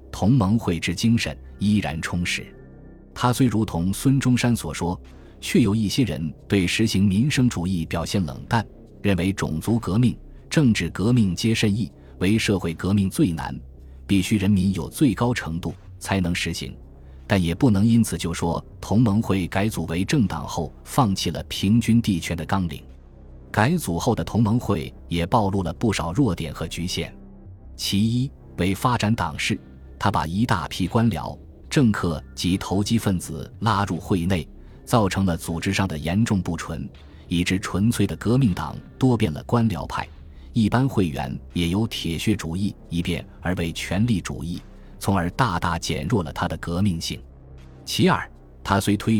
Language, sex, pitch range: Chinese, male, 80-110 Hz